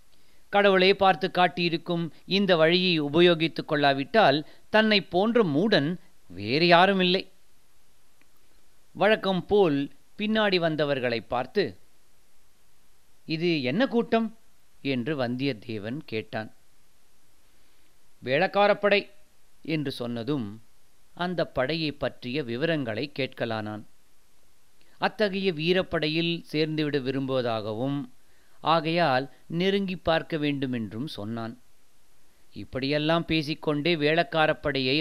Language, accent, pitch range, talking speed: Tamil, native, 135-185 Hz, 75 wpm